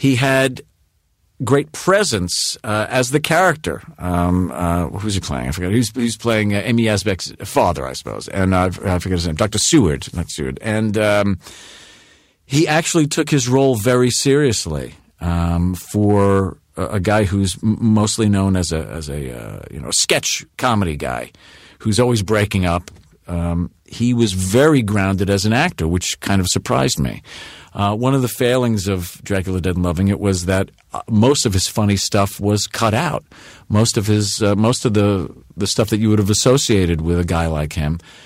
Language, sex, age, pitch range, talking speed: English, male, 50-69, 90-120 Hz, 190 wpm